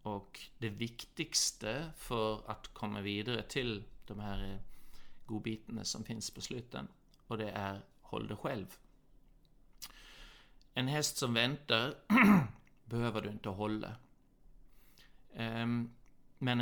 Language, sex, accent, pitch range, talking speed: Swedish, male, native, 105-125 Hz, 110 wpm